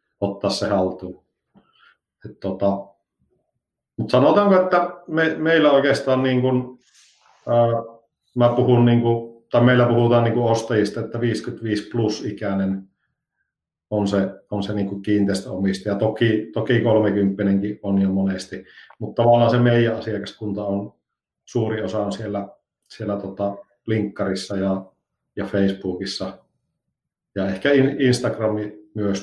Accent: native